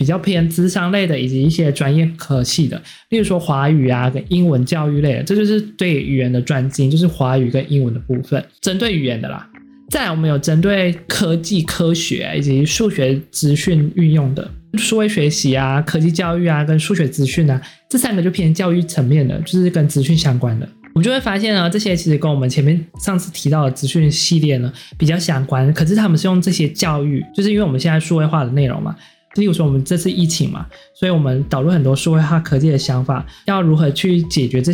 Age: 20-39